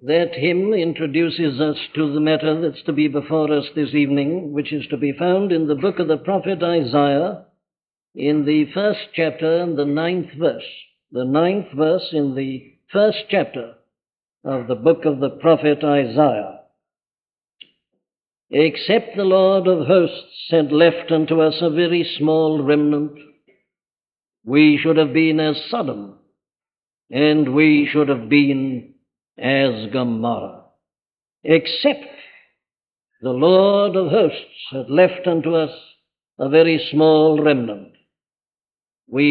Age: 60-79